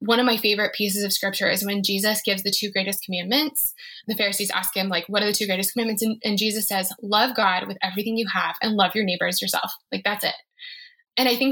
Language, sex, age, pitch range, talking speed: English, female, 10-29, 200-240 Hz, 245 wpm